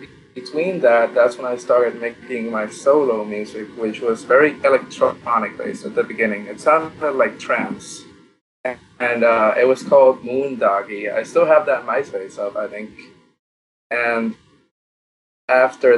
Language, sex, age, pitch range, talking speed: English, male, 20-39, 110-140 Hz, 145 wpm